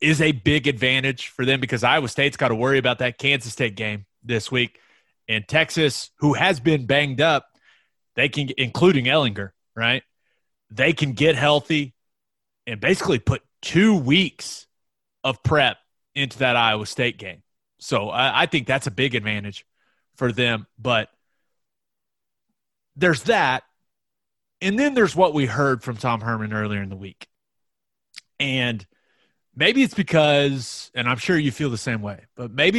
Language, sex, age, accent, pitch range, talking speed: English, male, 30-49, American, 115-155 Hz, 160 wpm